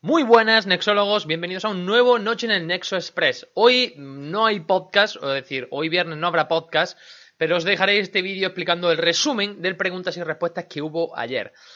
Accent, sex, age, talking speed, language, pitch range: Spanish, male, 20-39, 200 wpm, Spanish, 145-195 Hz